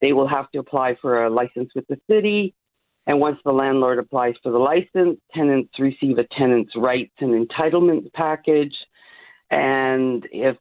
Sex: female